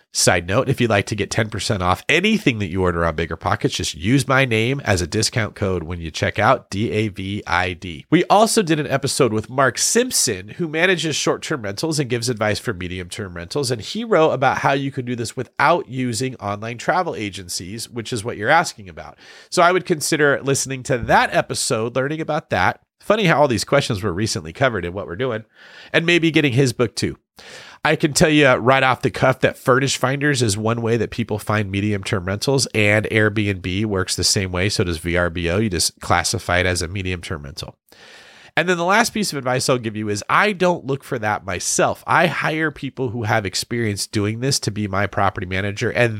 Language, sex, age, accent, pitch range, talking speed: English, male, 40-59, American, 100-135 Hz, 210 wpm